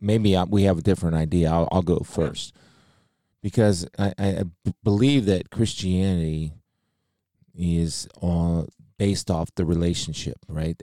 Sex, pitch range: male, 85-105 Hz